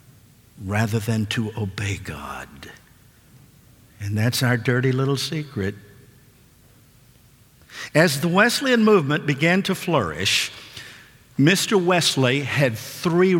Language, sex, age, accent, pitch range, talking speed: English, male, 50-69, American, 120-165 Hz, 100 wpm